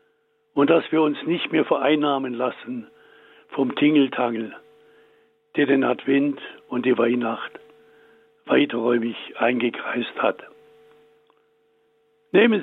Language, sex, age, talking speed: German, male, 60-79, 95 wpm